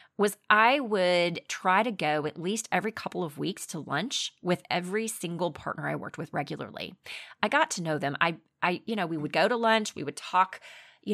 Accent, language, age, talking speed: American, English, 30-49, 215 wpm